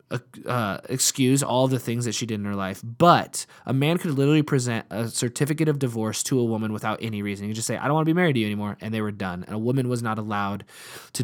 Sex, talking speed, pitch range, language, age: male, 270 wpm, 110-150 Hz, English, 20-39